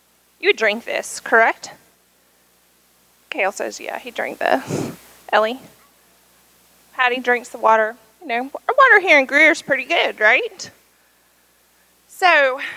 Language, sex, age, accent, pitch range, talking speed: English, female, 20-39, American, 185-295 Hz, 120 wpm